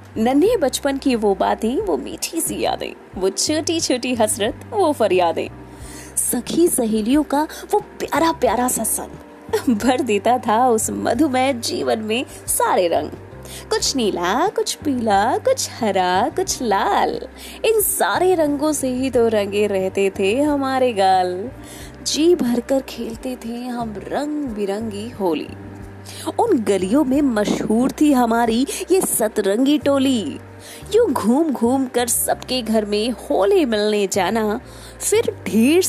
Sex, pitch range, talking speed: female, 210-300 Hz, 130 wpm